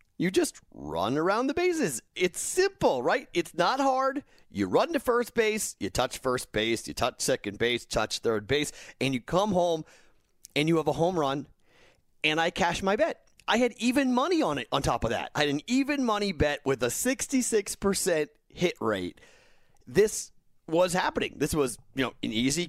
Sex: male